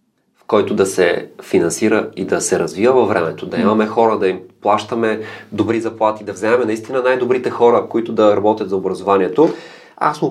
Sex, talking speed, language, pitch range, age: male, 175 wpm, Bulgarian, 100-140 Hz, 30-49